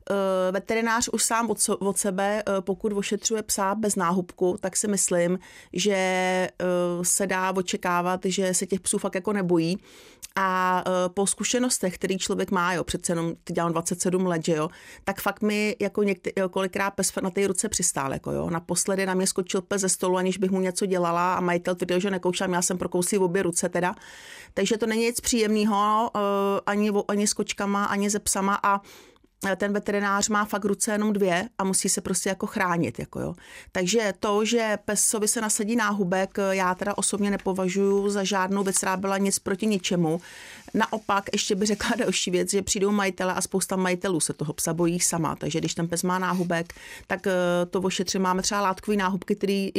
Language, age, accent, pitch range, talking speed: Czech, 40-59, native, 185-205 Hz, 185 wpm